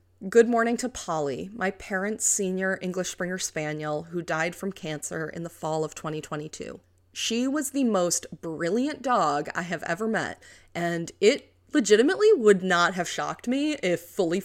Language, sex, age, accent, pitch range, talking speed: English, female, 30-49, American, 155-195 Hz, 160 wpm